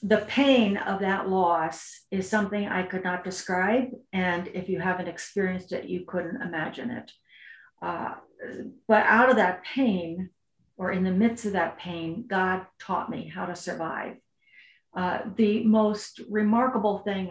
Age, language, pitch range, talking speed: 50-69, English, 180-215 Hz, 155 wpm